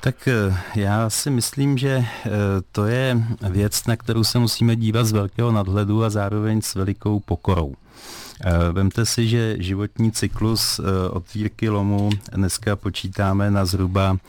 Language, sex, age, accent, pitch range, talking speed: Czech, male, 40-59, native, 90-105 Hz, 135 wpm